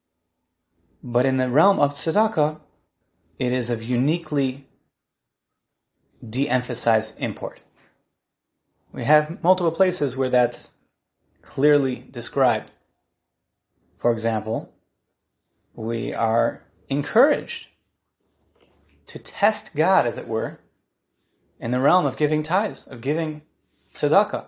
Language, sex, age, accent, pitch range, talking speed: English, male, 30-49, American, 115-150 Hz, 100 wpm